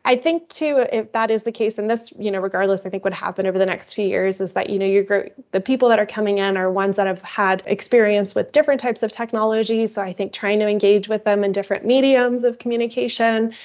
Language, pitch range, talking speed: English, 195-225 Hz, 255 wpm